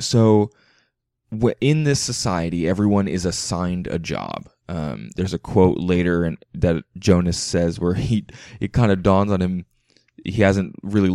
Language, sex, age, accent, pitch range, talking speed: English, male, 20-39, American, 90-115 Hz, 160 wpm